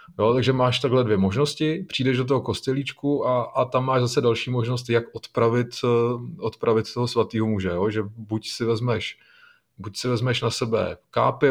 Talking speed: 175 wpm